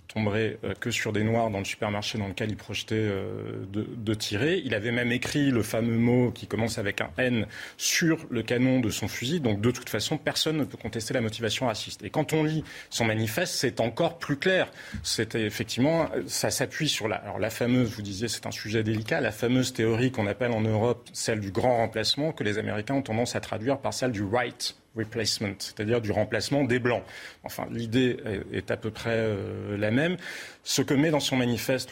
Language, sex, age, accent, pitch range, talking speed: French, male, 30-49, French, 110-140 Hz, 220 wpm